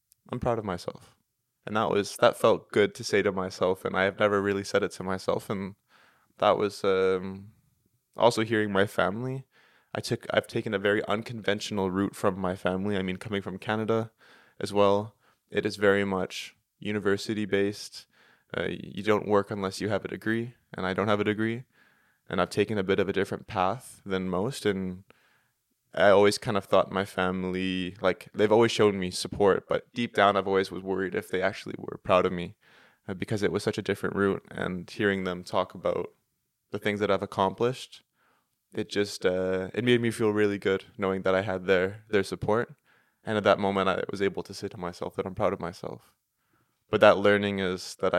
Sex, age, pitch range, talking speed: male, 20-39, 95-105 Hz, 200 wpm